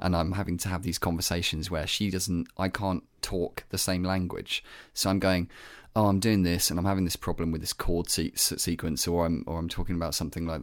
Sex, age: male, 30-49